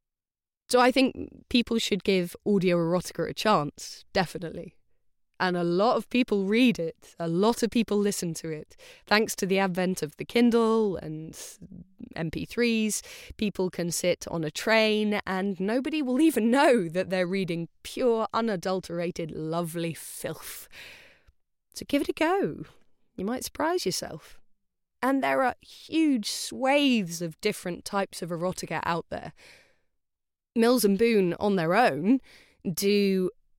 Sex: female